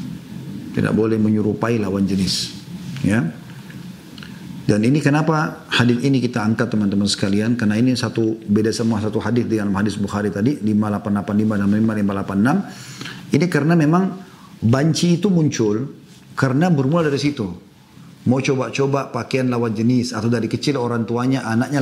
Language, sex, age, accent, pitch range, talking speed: Indonesian, male, 40-59, native, 115-160 Hz, 140 wpm